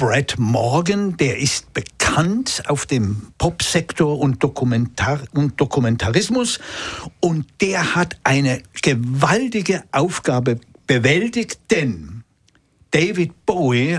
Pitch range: 135-200 Hz